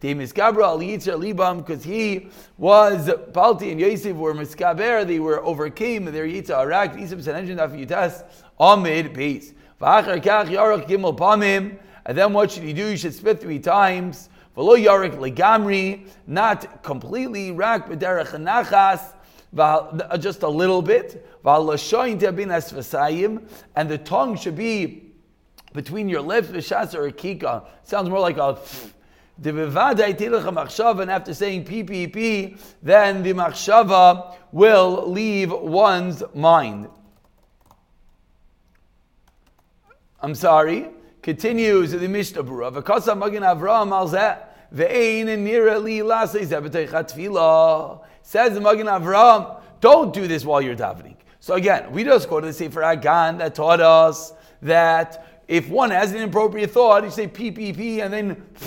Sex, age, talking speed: male, 30-49, 110 wpm